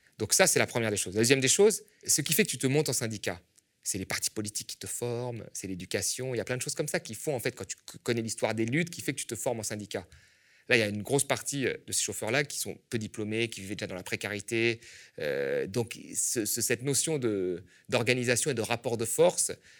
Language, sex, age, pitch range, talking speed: French, male, 30-49, 110-155 Hz, 265 wpm